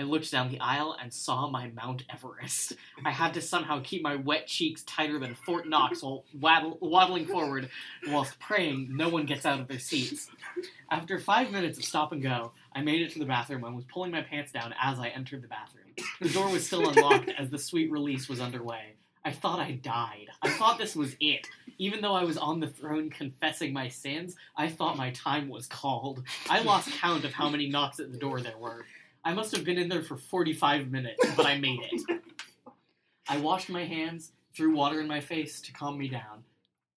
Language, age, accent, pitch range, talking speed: English, 20-39, American, 130-170 Hz, 215 wpm